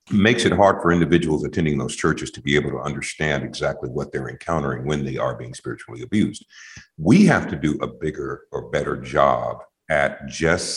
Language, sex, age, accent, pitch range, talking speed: English, male, 50-69, American, 75-90 Hz, 190 wpm